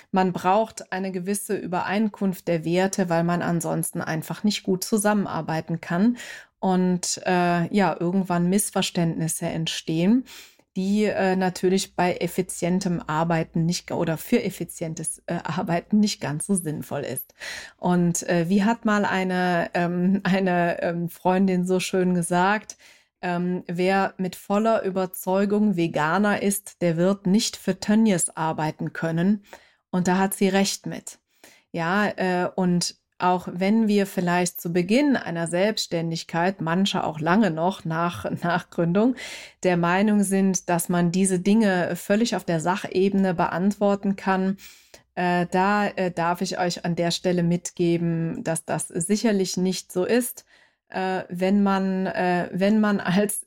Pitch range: 175-195 Hz